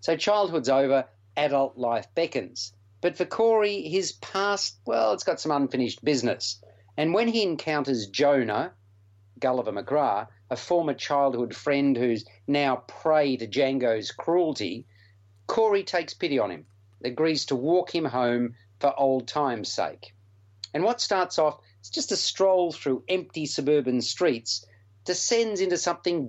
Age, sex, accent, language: 50-69, male, Australian, English